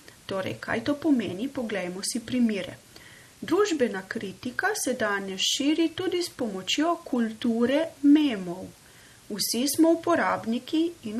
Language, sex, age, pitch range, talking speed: Italian, female, 30-49, 210-300 Hz, 115 wpm